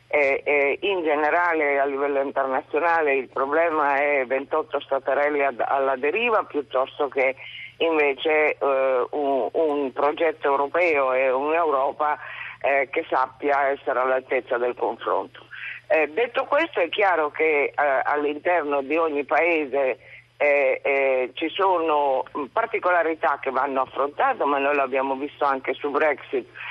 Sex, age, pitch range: female, 50-69, 135-160 Hz